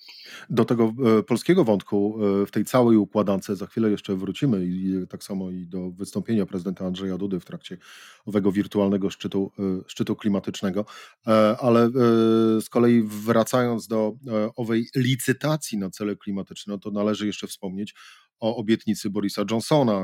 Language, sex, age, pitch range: Polish, male, 30-49, 100-115 Hz